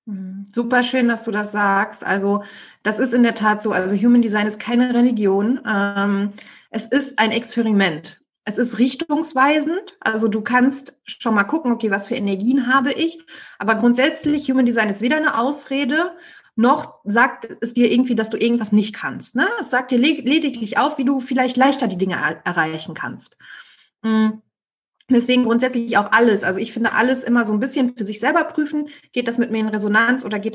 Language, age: German, 30-49